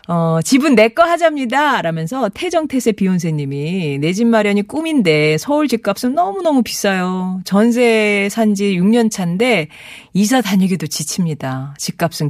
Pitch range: 165-240 Hz